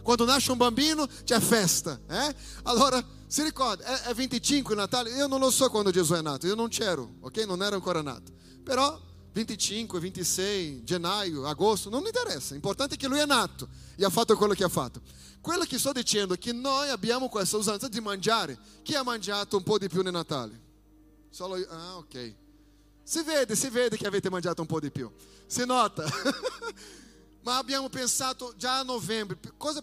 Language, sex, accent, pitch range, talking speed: Italian, male, Brazilian, 175-235 Hz, 200 wpm